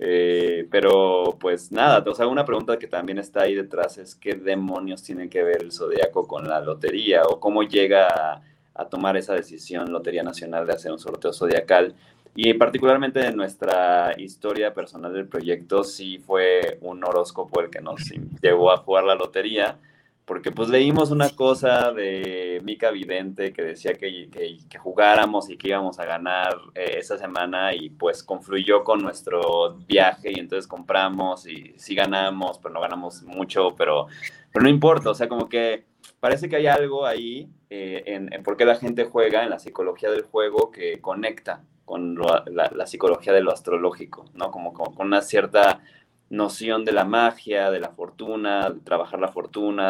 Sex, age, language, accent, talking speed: male, 30-49, Spanish, Mexican, 180 wpm